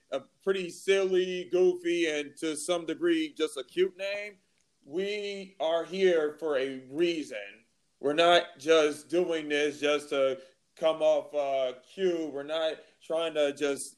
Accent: American